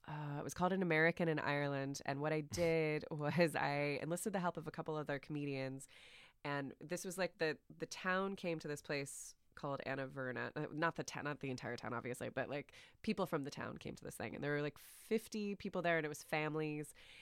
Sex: female